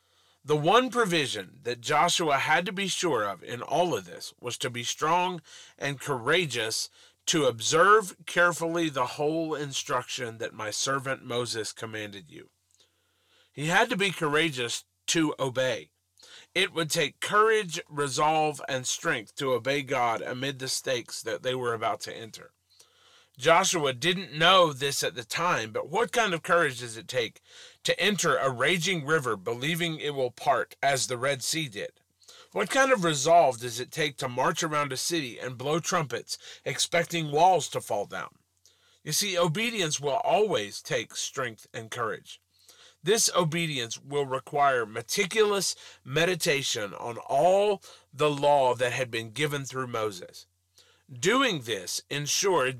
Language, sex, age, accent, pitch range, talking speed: English, male, 40-59, American, 130-175 Hz, 155 wpm